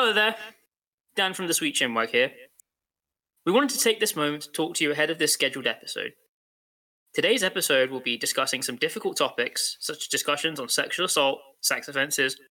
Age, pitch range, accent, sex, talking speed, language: 10-29, 125-175 Hz, British, male, 185 wpm, English